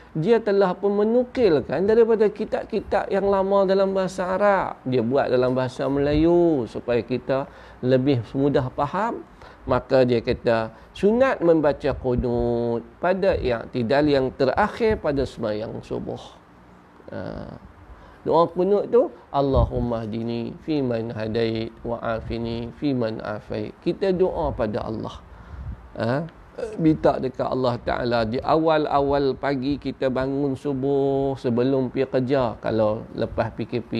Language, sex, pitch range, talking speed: Malay, male, 120-155 Hz, 120 wpm